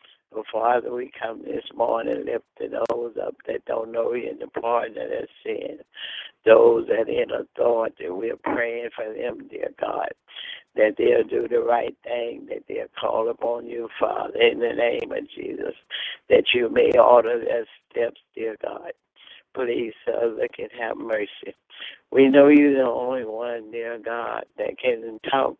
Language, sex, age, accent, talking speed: English, male, 60-79, American, 165 wpm